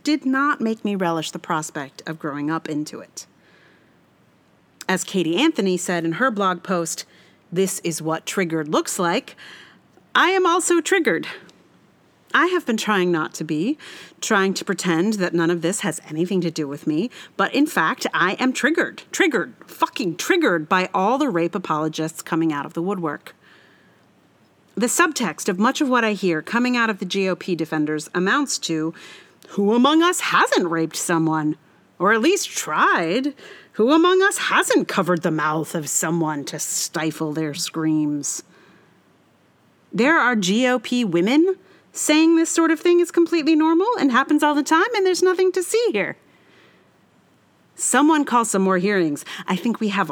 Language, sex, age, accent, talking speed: English, female, 40-59, American, 170 wpm